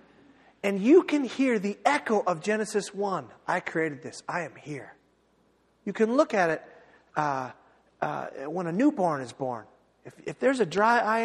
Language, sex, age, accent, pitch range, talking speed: English, male, 40-59, American, 185-255 Hz, 175 wpm